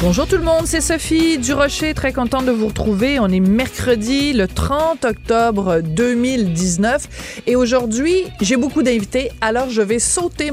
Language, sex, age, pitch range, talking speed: French, female, 40-59, 195-255 Hz, 165 wpm